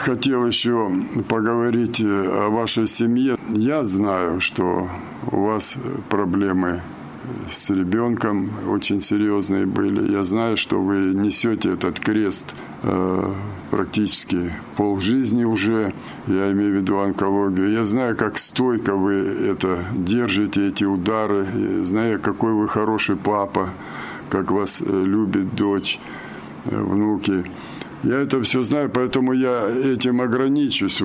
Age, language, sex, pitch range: 50-69, Russian, male, 95-115 Hz